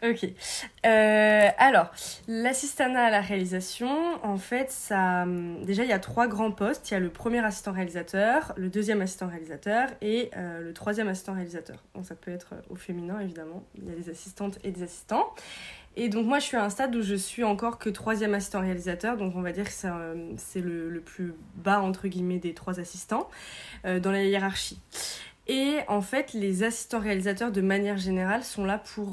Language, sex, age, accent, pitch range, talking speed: French, female, 20-39, French, 185-215 Hz, 200 wpm